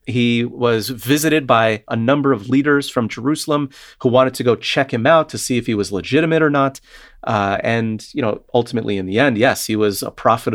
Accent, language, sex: American, English, male